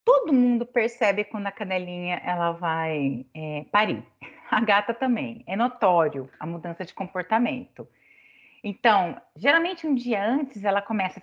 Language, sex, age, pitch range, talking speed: Portuguese, female, 30-49, 175-235 Hz, 145 wpm